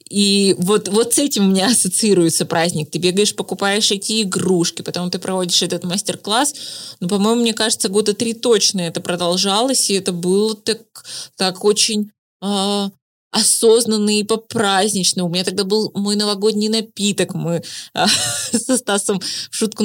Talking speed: 150 wpm